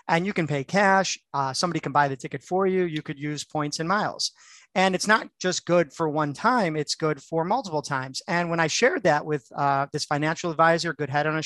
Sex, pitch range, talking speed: male, 145-175 Hz, 240 wpm